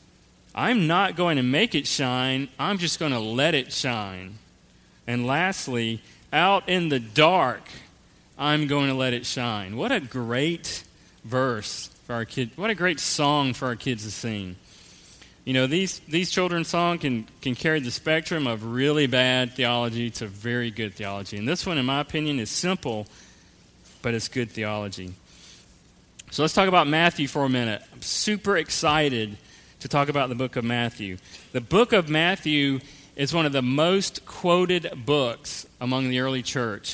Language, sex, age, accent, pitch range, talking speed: English, male, 40-59, American, 120-160 Hz, 170 wpm